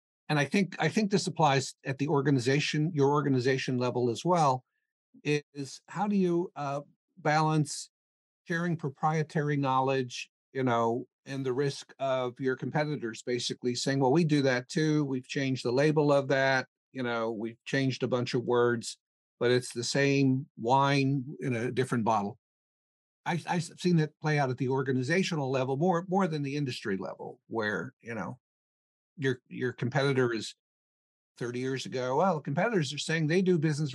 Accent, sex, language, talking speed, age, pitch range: American, male, English, 170 wpm, 50-69, 125-155 Hz